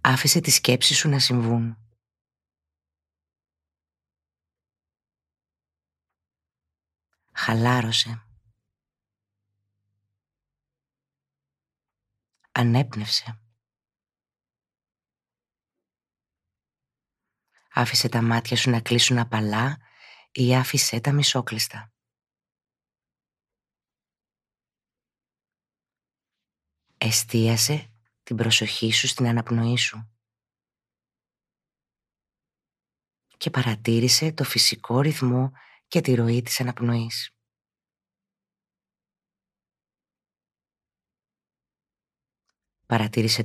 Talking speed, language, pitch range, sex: 50 wpm, Greek, 105-125 Hz, female